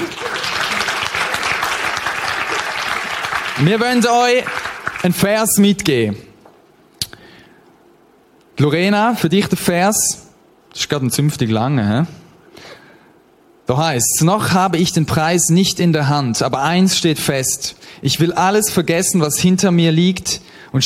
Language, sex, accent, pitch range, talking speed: German, male, German, 130-175 Hz, 120 wpm